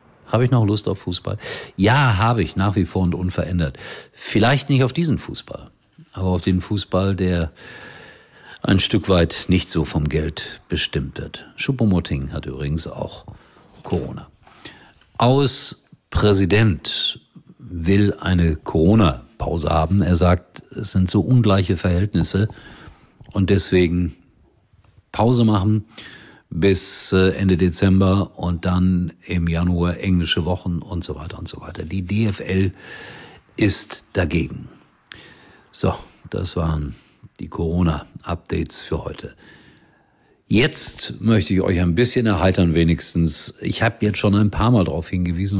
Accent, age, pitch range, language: German, 50-69, 85-105 Hz, German